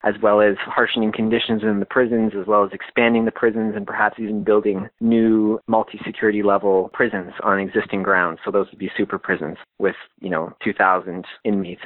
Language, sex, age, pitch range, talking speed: English, male, 30-49, 100-115 Hz, 180 wpm